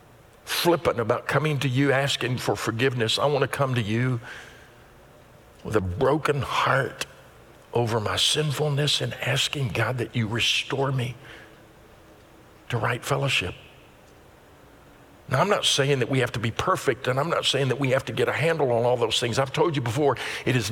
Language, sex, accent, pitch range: English, male, American, 125-160 Hz